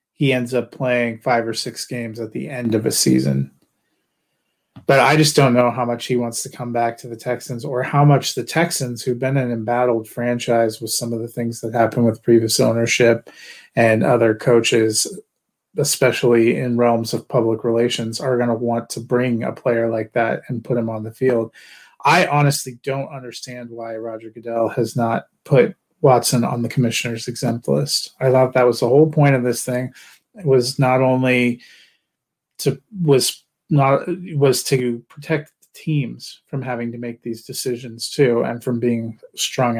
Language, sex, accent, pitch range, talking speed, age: English, male, American, 115-130 Hz, 185 wpm, 30-49